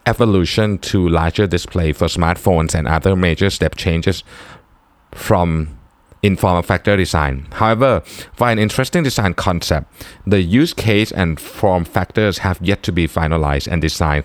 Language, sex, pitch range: Thai, male, 80-110 Hz